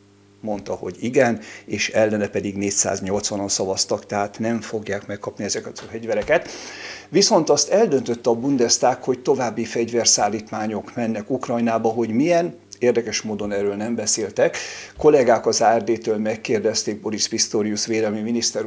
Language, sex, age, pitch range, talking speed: Hungarian, male, 50-69, 105-120 Hz, 125 wpm